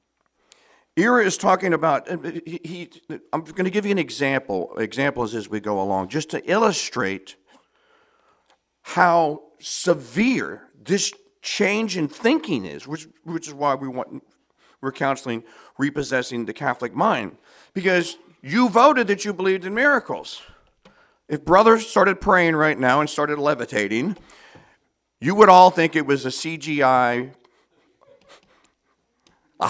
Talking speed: 135 wpm